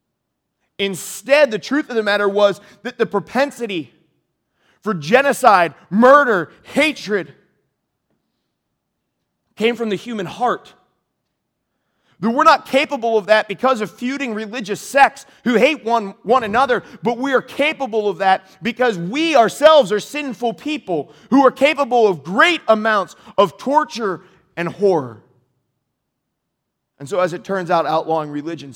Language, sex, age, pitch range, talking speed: English, male, 30-49, 185-250 Hz, 135 wpm